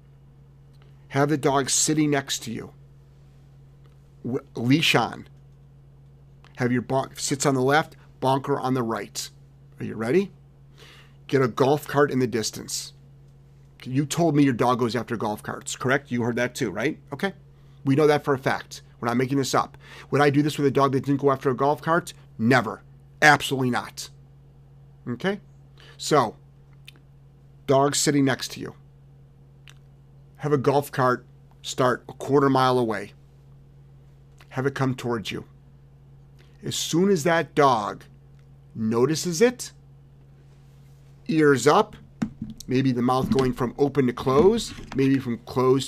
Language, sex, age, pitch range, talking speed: English, male, 40-59, 135-145 Hz, 150 wpm